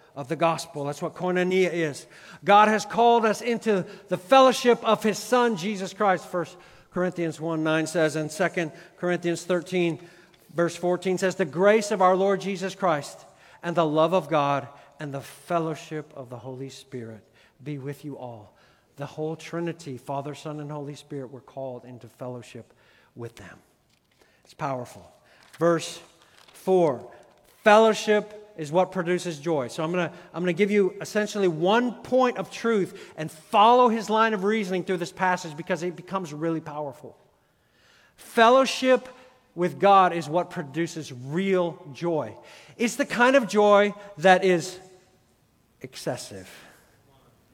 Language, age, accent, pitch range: English, 50-69, American, 140-190 Hz